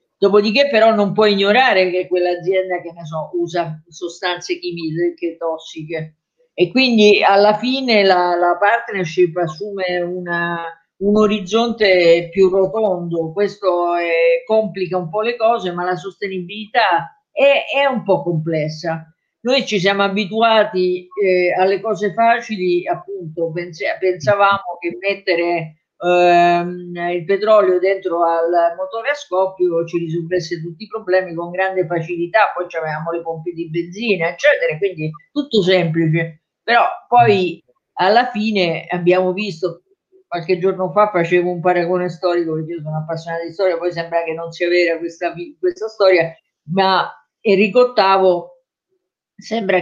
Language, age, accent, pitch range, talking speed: Italian, 50-69, native, 170-205 Hz, 135 wpm